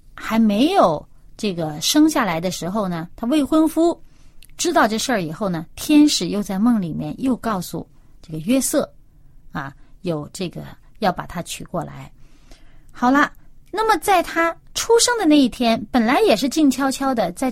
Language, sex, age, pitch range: Chinese, female, 30-49, 180-270 Hz